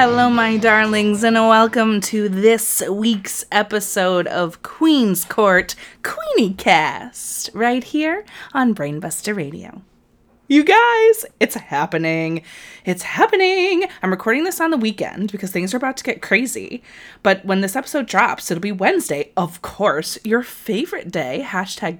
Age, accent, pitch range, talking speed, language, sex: 20-39, American, 185-265 Hz, 140 wpm, English, female